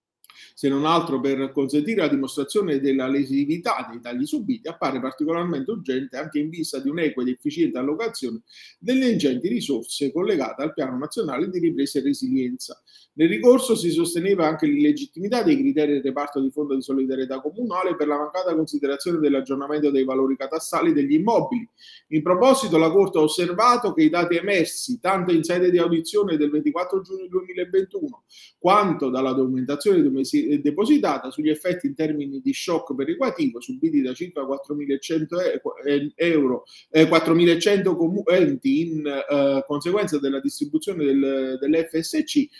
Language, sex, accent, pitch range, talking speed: Italian, male, native, 140-230 Hz, 145 wpm